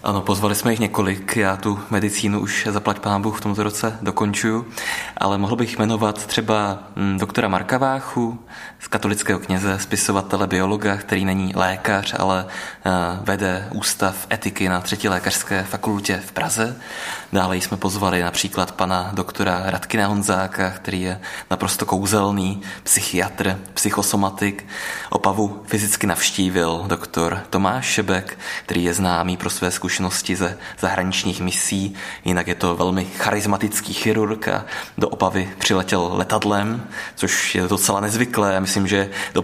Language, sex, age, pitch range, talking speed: Czech, male, 20-39, 95-105 Hz, 135 wpm